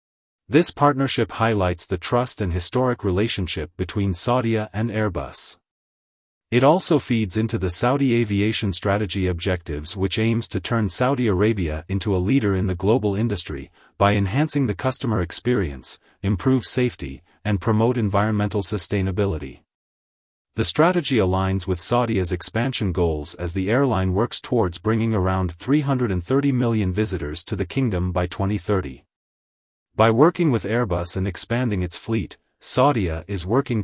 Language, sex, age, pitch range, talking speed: English, male, 40-59, 90-120 Hz, 140 wpm